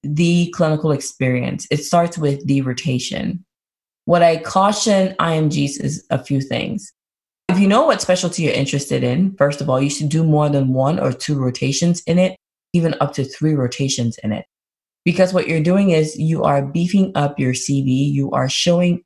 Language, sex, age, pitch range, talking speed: English, female, 20-39, 135-175 Hz, 185 wpm